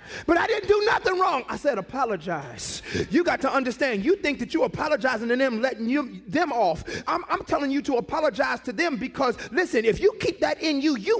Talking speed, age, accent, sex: 215 wpm, 30-49, American, male